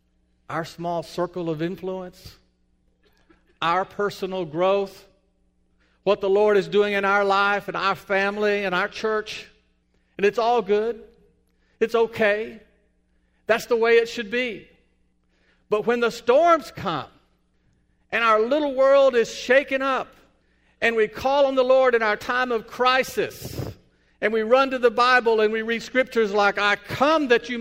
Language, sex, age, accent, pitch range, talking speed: English, male, 50-69, American, 150-235 Hz, 155 wpm